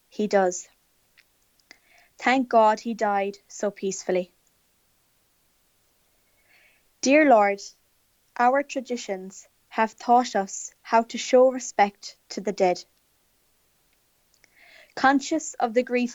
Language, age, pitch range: English, 20-39, 200-245 Hz